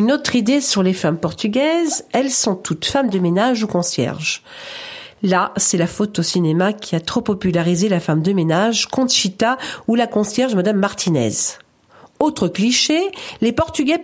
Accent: French